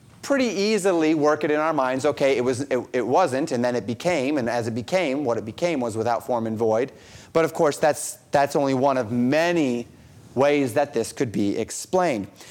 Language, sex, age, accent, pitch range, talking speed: English, male, 30-49, American, 135-170 Hz, 210 wpm